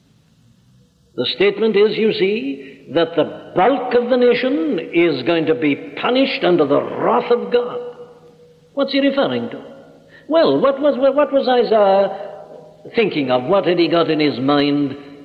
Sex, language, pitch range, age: male, English, 155-245 Hz, 60-79